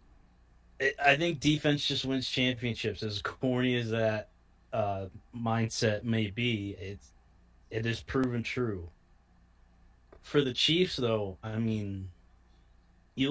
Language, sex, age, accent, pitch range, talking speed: English, male, 20-39, American, 90-120 Hz, 115 wpm